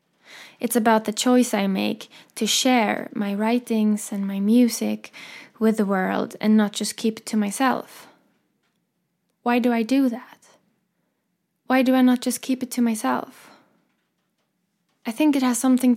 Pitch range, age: 210-250 Hz, 10-29